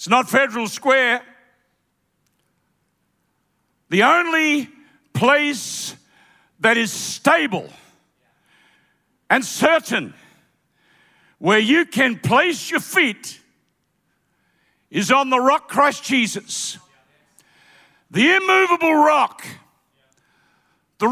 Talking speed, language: 80 wpm, English